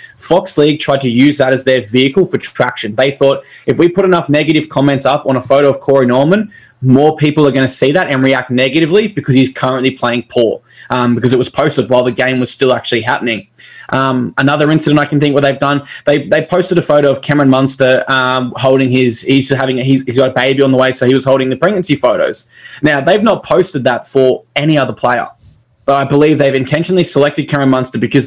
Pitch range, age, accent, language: 130-150 Hz, 10-29, Australian, English